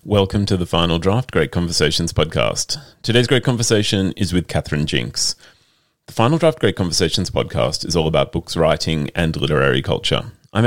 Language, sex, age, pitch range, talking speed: English, male, 30-49, 85-120 Hz, 170 wpm